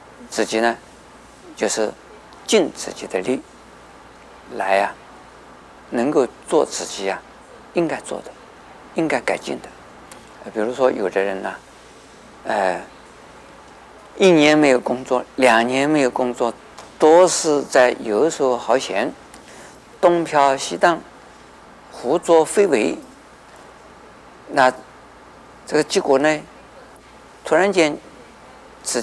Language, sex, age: Chinese, male, 50-69